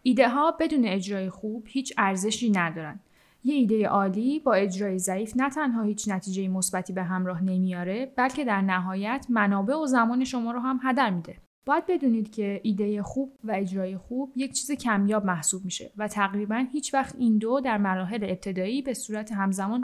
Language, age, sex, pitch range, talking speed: Persian, 10-29, female, 195-255 Hz, 175 wpm